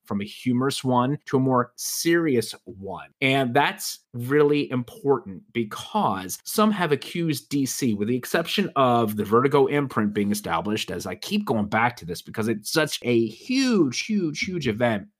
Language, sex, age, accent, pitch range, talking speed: English, male, 30-49, American, 110-150 Hz, 165 wpm